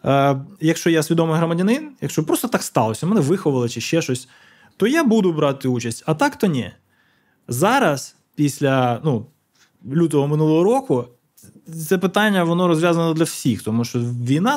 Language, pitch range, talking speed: Ukrainian, 130-170 Hz, 150 wpm